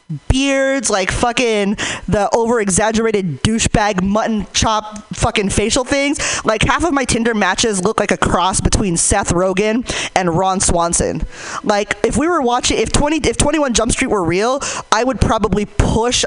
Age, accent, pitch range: 20-39, American, 200-245 Hz